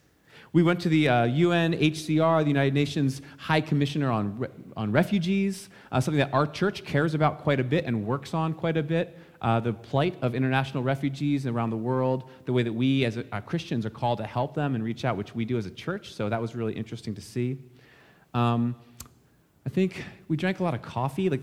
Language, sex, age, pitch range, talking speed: English, male, 30-49, 120-160 Hz, 220 wpm